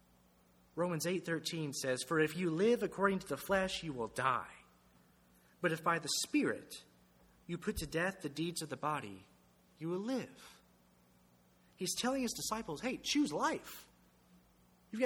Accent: American